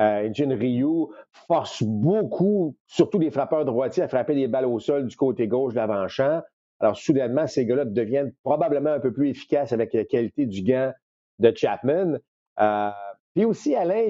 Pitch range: 110-150 Hz